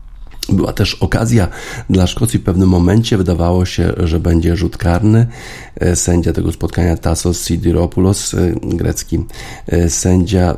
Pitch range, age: 85-100 Hz, 40-59